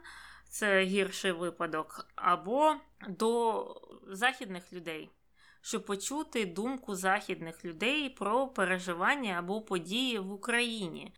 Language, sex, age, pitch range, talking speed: Ukrainian, female, 20-39, 180-225 Hz, 95 wpm